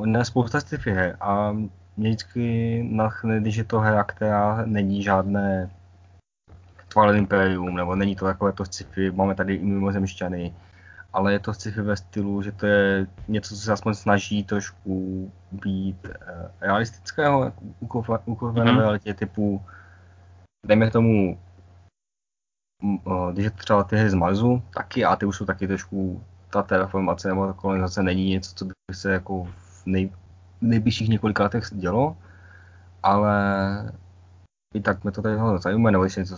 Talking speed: 165 wpm